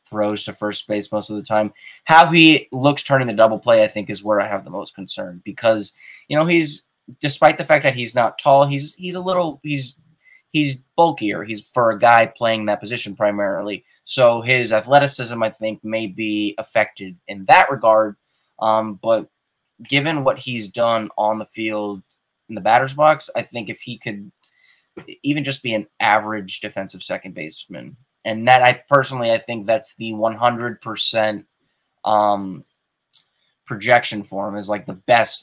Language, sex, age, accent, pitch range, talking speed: English, male, 20-39, American, 105-120 Hz, 175 wpm